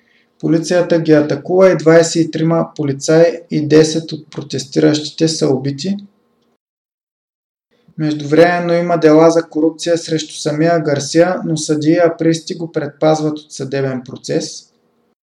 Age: 20-39